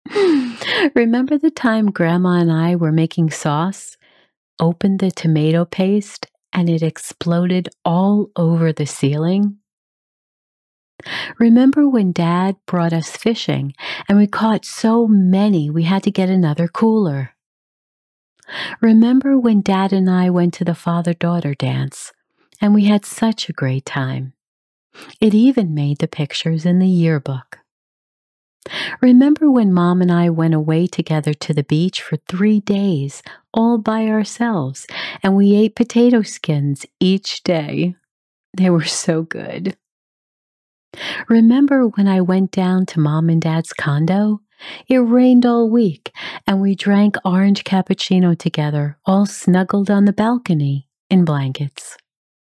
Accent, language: American, English